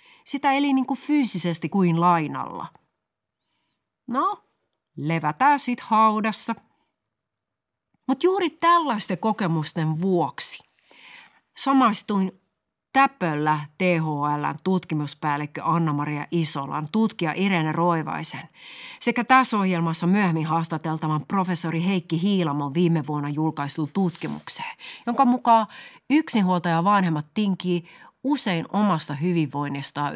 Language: Finnish